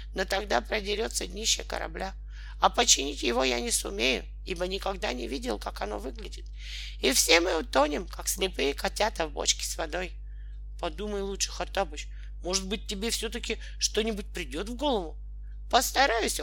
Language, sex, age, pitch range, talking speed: Russian, male, 40-59, 170-255 Hz, 150 wpm